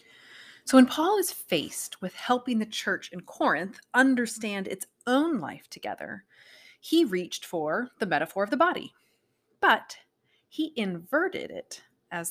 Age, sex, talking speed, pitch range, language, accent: 30-49, female, 140 wpm, 190-265 Hz, English, American